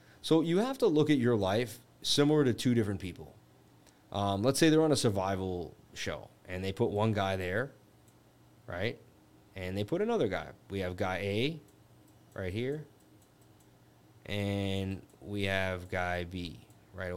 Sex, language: male, English